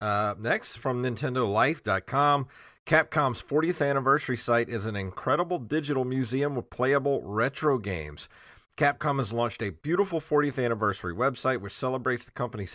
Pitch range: 100-130 Hz